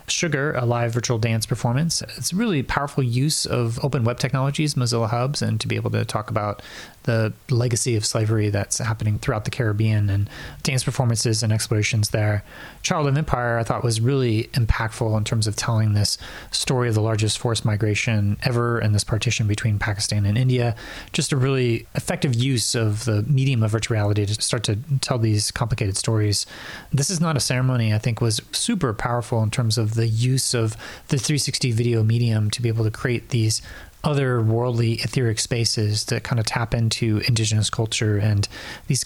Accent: American